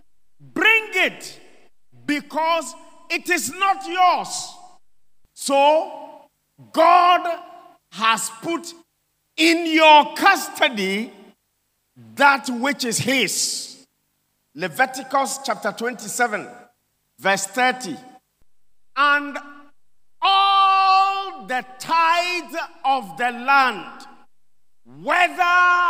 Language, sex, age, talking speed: English, male, 50-69, 70 wpm